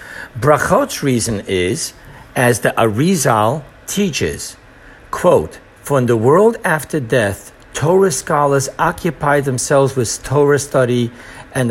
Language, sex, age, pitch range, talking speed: English, male, 60-79, 115-150 Hz, 115 wpm